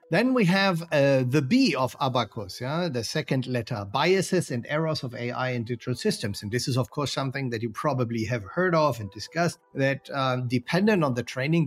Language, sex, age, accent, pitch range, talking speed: Italian, male, 50-69, German, 120-165 Hz, 200 wpm